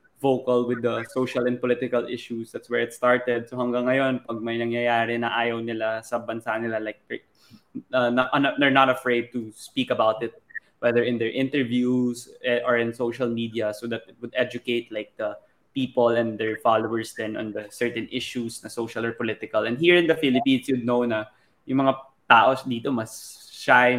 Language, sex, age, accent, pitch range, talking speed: Filipino, male, 20-39, native, 115-125 Hz, 180 wpm